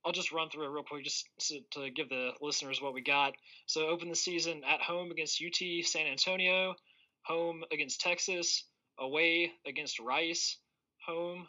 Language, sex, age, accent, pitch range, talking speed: English, male, 20-39, American, 140-165 Hz, 170 wpm